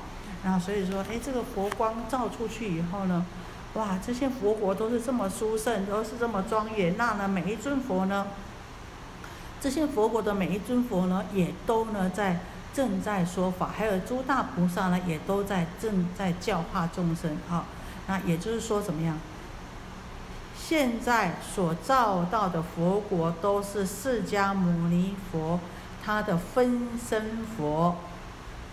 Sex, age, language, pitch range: female, 50-69, Chinese, 175-220 Hz